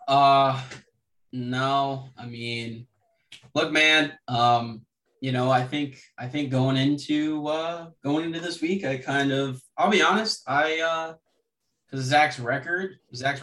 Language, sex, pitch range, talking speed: English, male, 120-140 Hz, 145 wpm